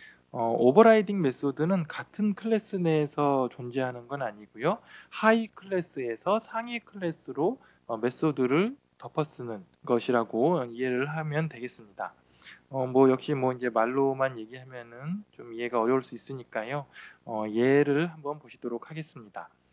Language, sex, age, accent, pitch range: Korean, male, 20-39, native, 125-190 Hz